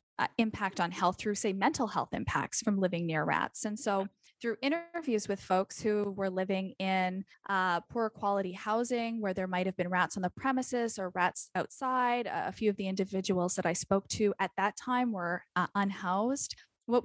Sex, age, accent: female, 10-29, American